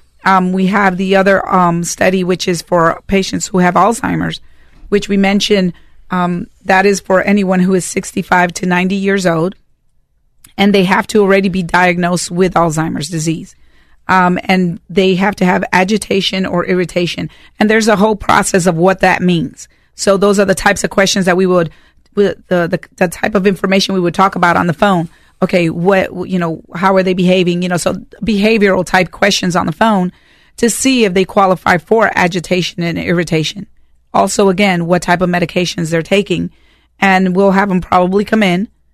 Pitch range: 175-195 Hz